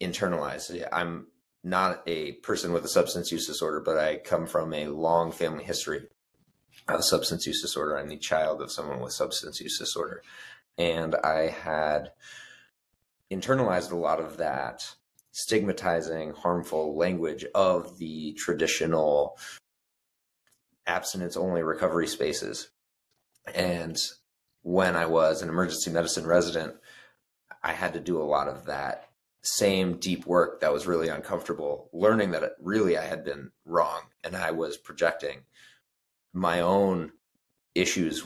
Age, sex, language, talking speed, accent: 30-49, male, English, 135 wpm, American